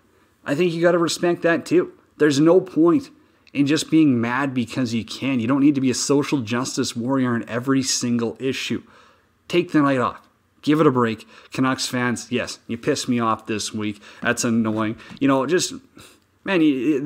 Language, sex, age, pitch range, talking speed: English, male, 30-49, 120-170 Hz, 195 wpm